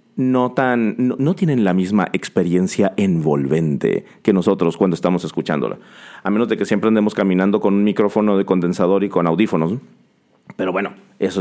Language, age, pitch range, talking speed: Spanish, 40-59, 100-130 Hz, 170 wpm